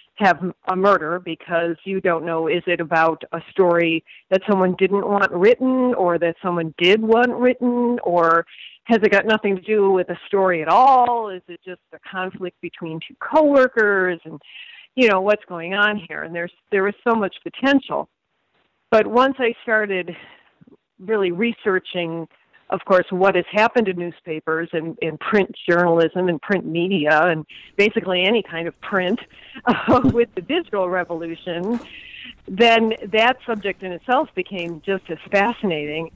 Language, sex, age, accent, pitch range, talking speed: English, female, 50-69, American, 165-205 Hz, 160 wpm